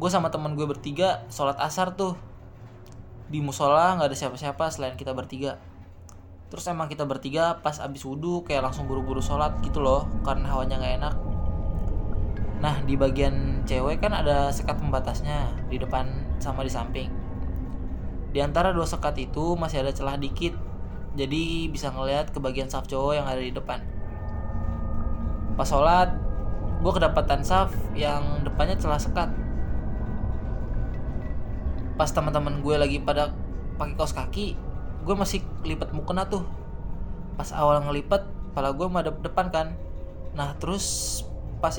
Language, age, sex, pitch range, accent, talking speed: Indonesian, 20-39, male, 95-150 Hz, native, 140 wpm